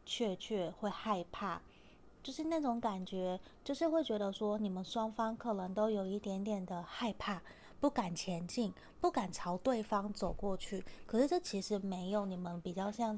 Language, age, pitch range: Chinese, 20-39, 185-220 Hz